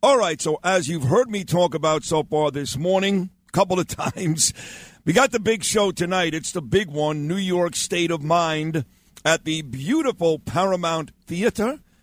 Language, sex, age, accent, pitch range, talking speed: English, male, 50-69, American, 160-185 Hz, 185 wpm